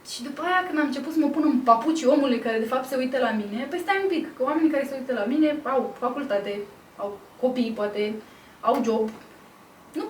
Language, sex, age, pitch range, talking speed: Romanian, female, 20-39, 220-295 Hz, 225 wpm